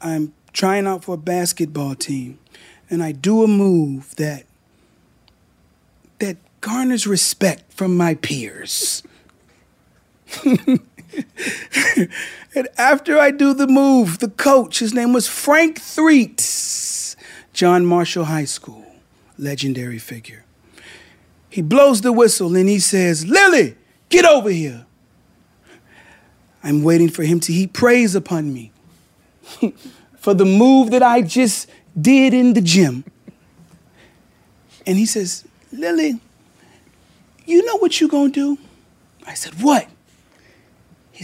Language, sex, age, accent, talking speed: English, male, 40-59, American, 120 wpm